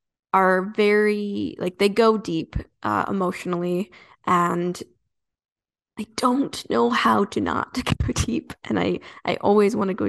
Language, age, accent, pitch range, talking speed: English, 10-29, American, 185-215 Hz, 145 wpm